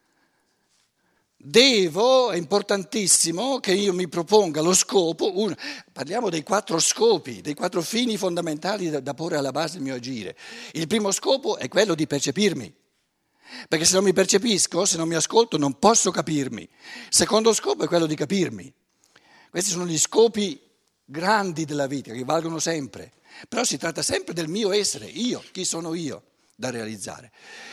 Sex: male